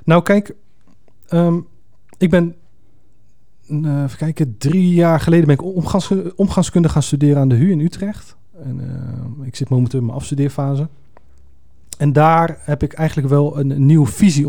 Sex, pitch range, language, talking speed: male, 125-155 Hz, Dutch, 155 wpm